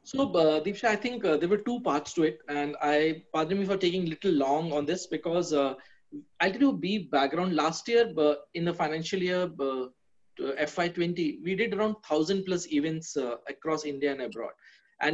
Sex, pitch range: male, 155-200 Hz